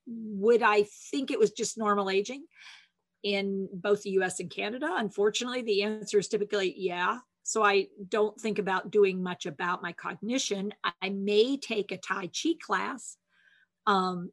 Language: English